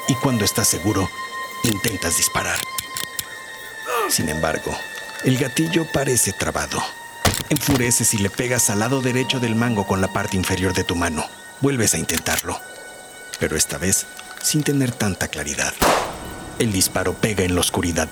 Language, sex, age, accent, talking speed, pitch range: Spanish, male, 50-69, Mexican, 145 wpm, 100-145 Hz